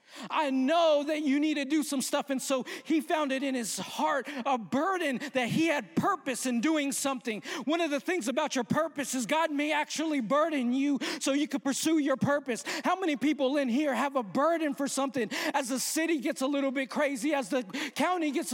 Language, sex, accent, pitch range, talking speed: English, male, American, 260-310 Hz, 215 wpm